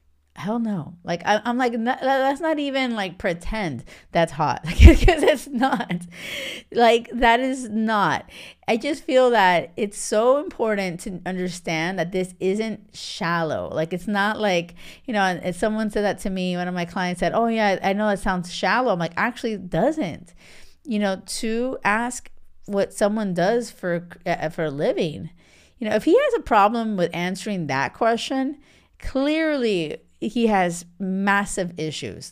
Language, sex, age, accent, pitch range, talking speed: English, female, 30-49, American, 170-230 Hz, 170 wpm